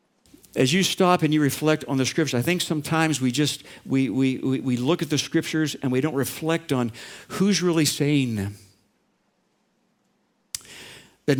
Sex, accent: male, American